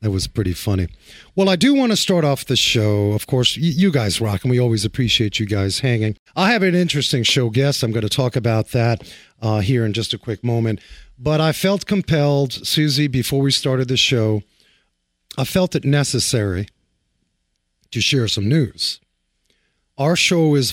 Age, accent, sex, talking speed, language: 40-59, American, male, 190 wpm, English